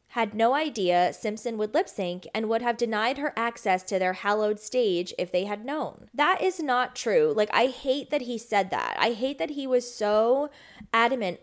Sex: female